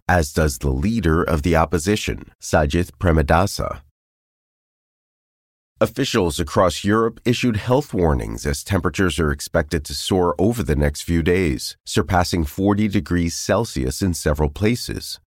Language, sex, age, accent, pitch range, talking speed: English, male, 30-49, American, 75-100 Hz, 130 wpm